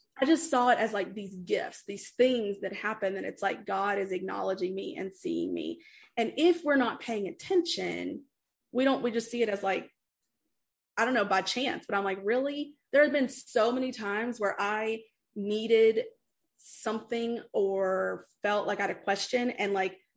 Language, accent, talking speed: English, American, 190 wpm